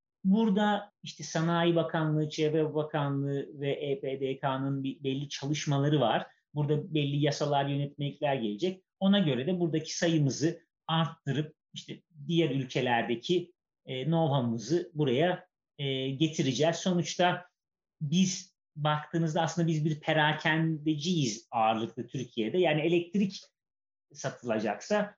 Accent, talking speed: native, 95 wpm